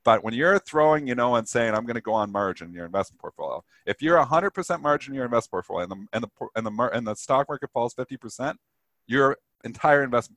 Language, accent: English, American